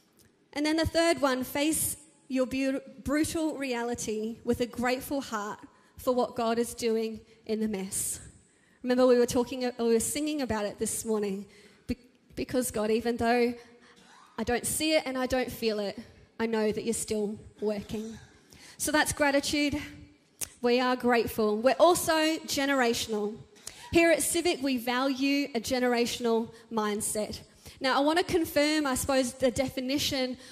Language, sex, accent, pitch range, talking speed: English, female, Australian, 230-275 Hz, 150 wpm